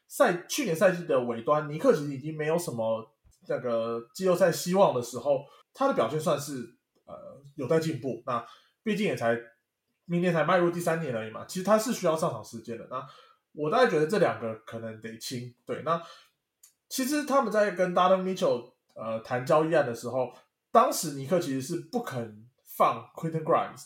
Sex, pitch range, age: male, 120-185 Hz, 20-39